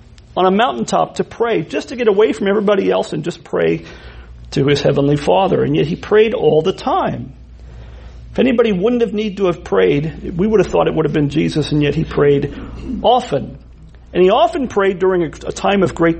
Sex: male